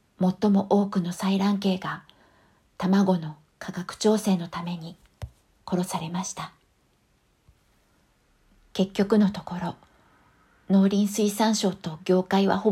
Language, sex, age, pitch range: Japanese, female, 50-69, 180-210 Hz